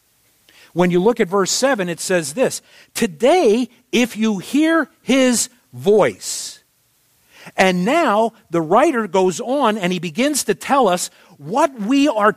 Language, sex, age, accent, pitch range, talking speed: English, male, 50-69, American, 185-250 Hz, 145 wpm